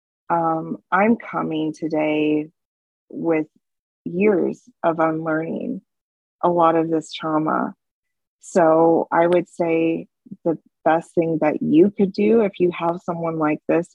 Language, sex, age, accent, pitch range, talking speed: English, female, 20-39, American, 160-190 Hz, 130 wpm